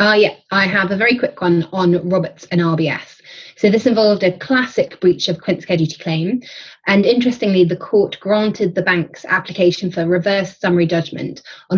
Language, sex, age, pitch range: English, female, 20-39, 165-205 Hz